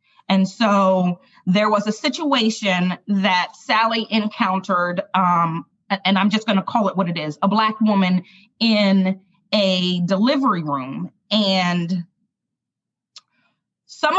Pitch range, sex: 190-230 Hz, female